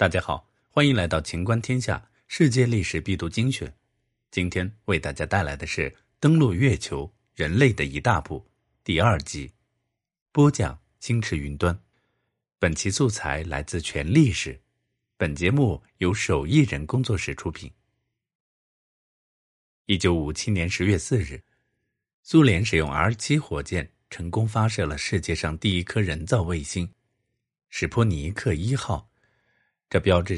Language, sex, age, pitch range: Chinese, male, 50-69, 85-125 Hz